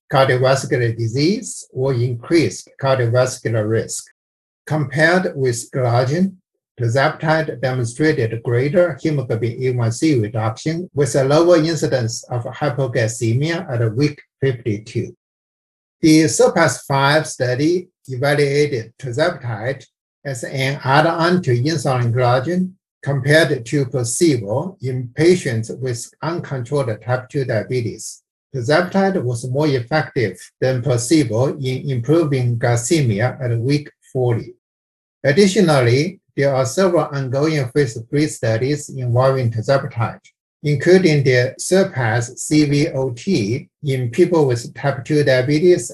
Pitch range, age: 125-155 Hz, 60-79